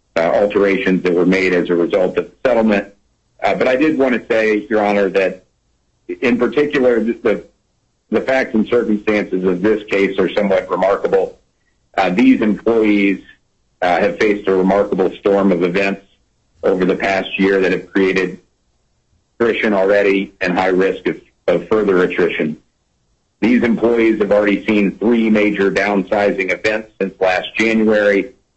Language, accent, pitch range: English, American, 95-110 Hz